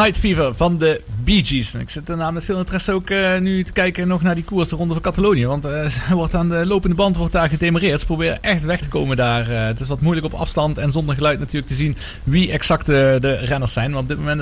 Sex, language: male, Dutch